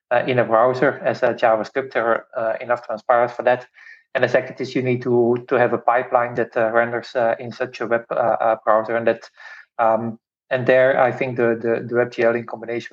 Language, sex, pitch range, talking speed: English, male, 120-140 Hz, 220 wpm